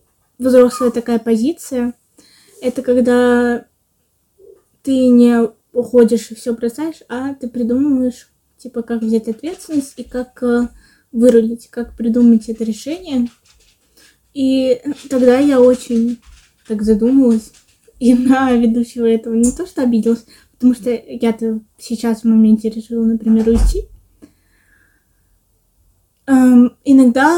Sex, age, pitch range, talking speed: female, 20-39, 225-255 Hz, 105 wpm